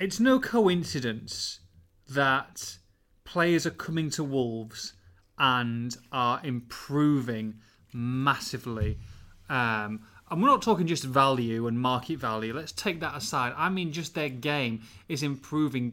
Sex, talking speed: male, 130 wpm